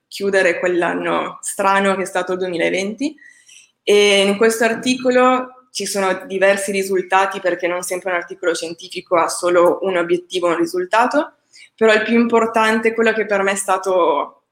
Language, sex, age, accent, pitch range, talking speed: Italian, female, 20-39, native, 185-210 Hz, 155 wpm